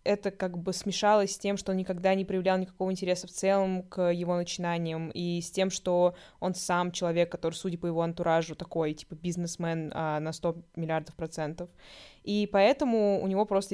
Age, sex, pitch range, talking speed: 20-39, female, 170-195 Hz, 185 wpm